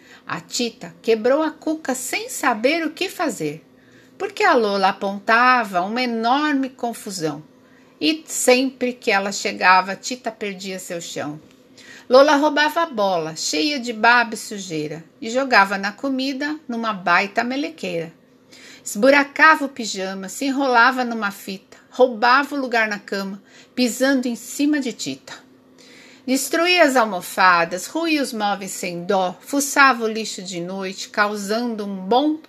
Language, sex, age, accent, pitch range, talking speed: Portuguese, female, 50-69, Brazilian, 205-290 Hz, 140 wpm